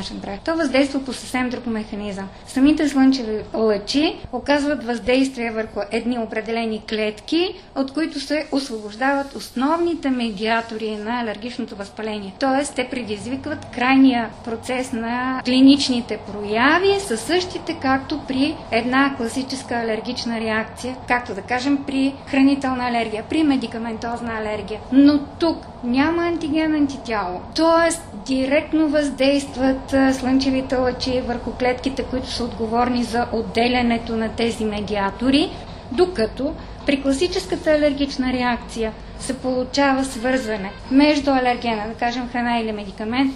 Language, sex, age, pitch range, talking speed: Bulgarian, female, 20-39, 230-280 Hz, 115 wpm